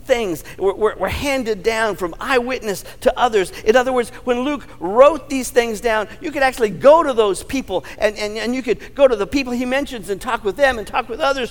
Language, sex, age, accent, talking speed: English, male, 50-69, American, 235 wpm